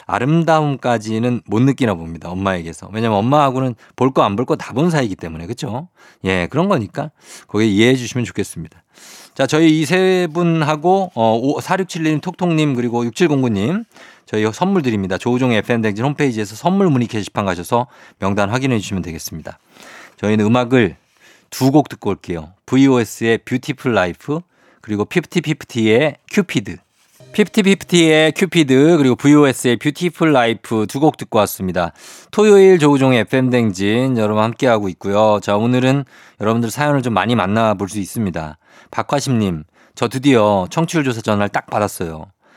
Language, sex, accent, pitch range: Korean, male, native, 105-150 Hz